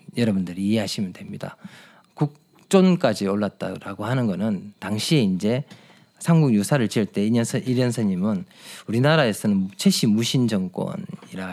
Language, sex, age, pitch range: Korean, male, 40-59, 120-190 Hz